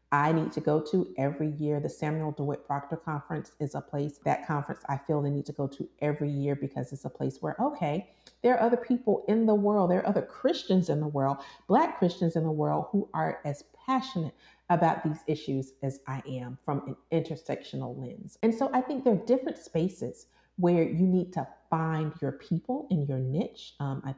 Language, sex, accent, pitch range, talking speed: English, female, American, 140-195 Hz, 210 wpm